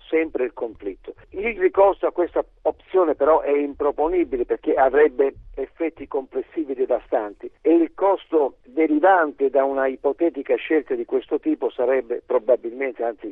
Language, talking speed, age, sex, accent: Italian, 135 wpm, 50-69, male, native